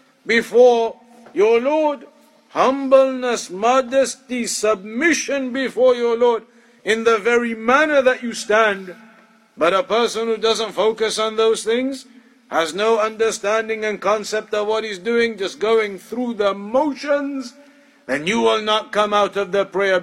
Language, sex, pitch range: English, male, 210-245 Hz